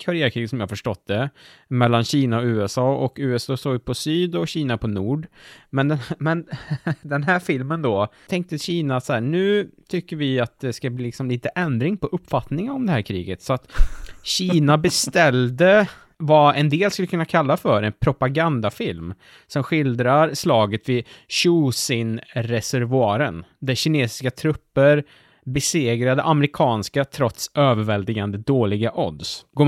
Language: English